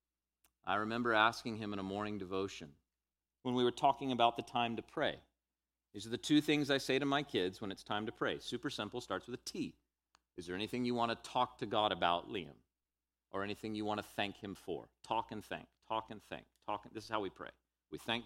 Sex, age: male, 40-59